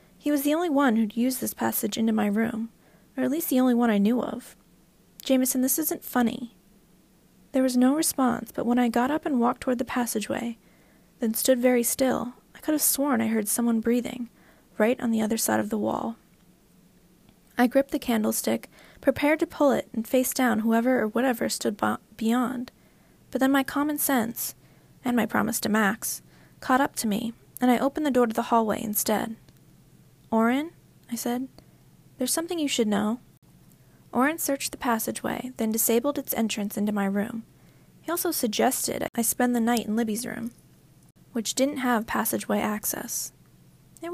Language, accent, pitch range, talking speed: English, American, 225-265 Hz, 180 wpm